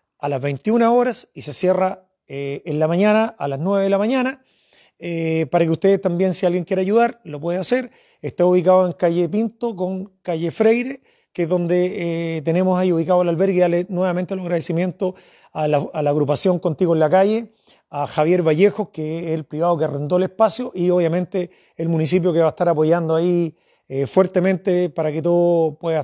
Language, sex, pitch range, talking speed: Spanish, male, 160-195 Hz, 195 wpm